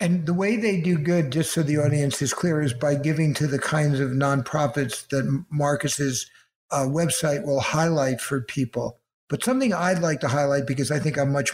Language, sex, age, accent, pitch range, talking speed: English, male, 60-79, American, 140-165 Hz, 205 wpm